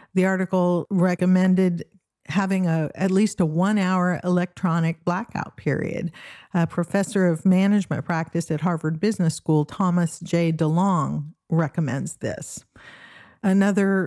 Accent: American